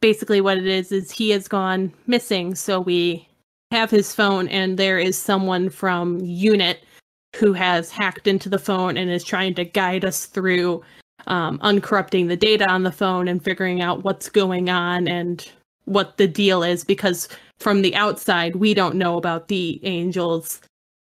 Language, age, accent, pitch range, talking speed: English, 20-39, American, 180-210 Hz, 175 wpm